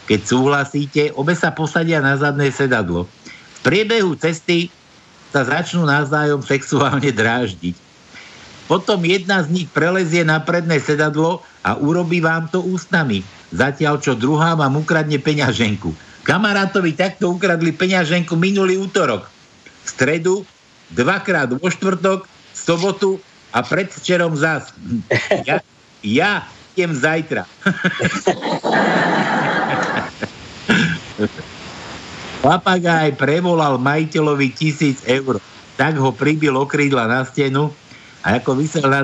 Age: 60-79